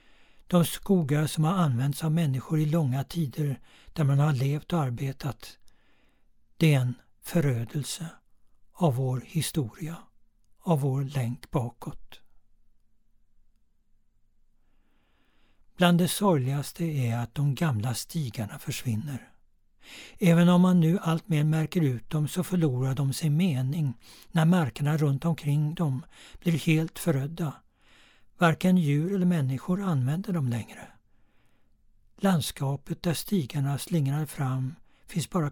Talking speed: 120 wpm